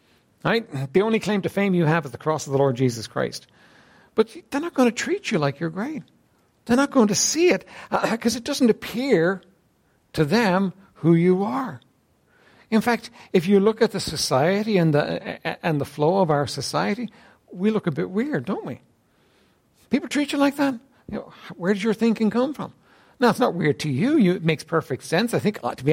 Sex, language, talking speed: male, English, 220 wpm